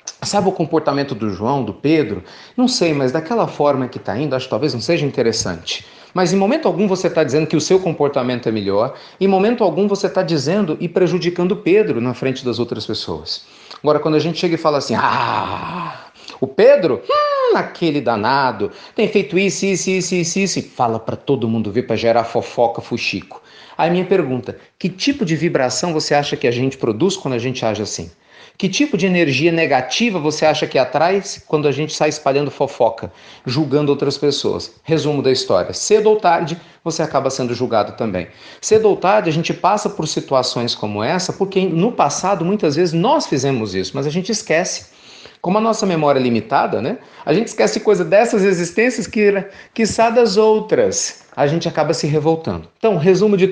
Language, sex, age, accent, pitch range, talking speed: Portuguese, male, 40-59, Brazilian, 130-195 Hz, 200 wpm